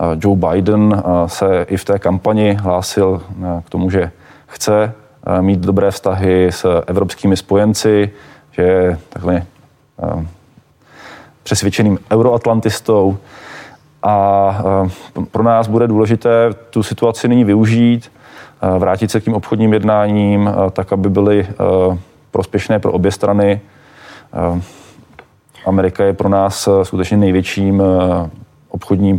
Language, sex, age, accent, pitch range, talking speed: Czech, male, 20-39, native, 90-105 Hz, 105 wpm